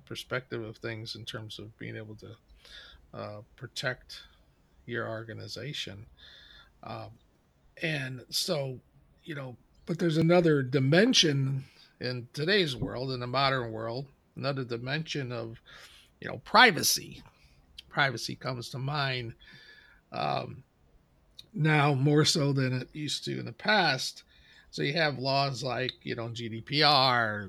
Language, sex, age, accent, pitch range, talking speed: English, male, 40-59, American, 115-145 Hz, 125 wpm